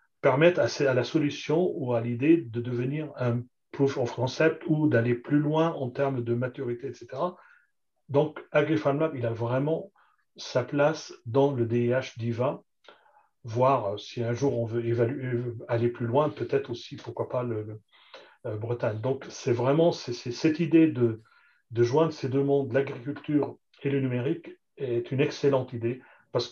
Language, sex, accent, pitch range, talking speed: French, male, French, 120-155 Hz, 165 wpm